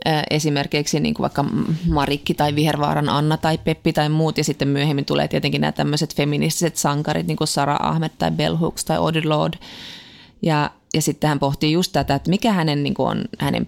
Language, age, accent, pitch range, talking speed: Finnish, 20-39, native, 145-170 Hz, 185 wpm